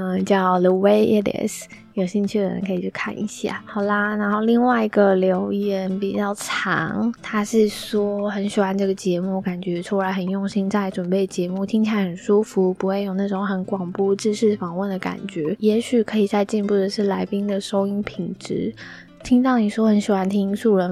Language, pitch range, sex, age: Chinese, 185-210 Hz, female, 20-39